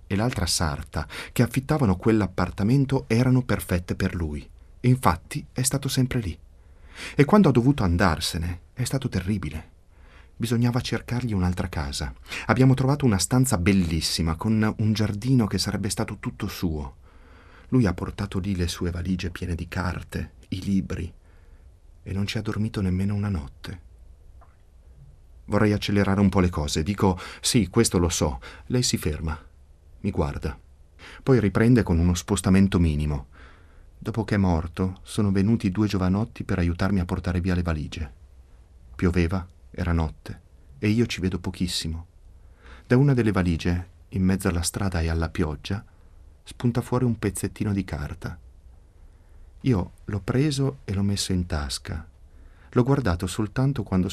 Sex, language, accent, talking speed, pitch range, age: male, Italian, native, 150 wpm, 80-105 Hz, 40-59